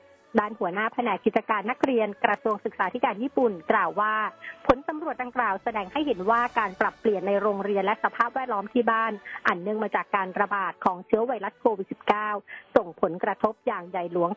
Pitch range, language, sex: 200-245 Hz, Thai, female